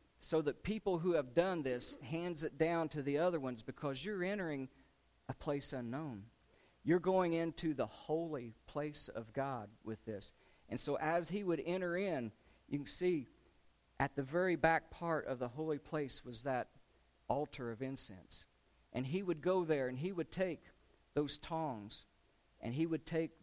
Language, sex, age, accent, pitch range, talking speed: English, male, 50-69, American, 125-165 Hz, 175 wpm